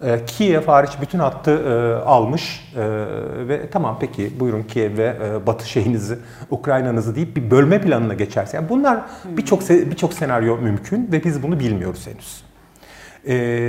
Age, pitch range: 40-59, 120-185 Hz